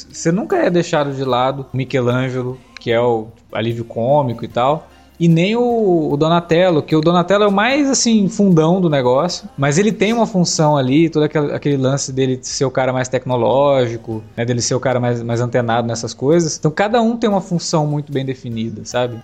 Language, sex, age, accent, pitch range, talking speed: Portuguese, male, 20-39, Brazilian, 120-175 Hz, 200 wpm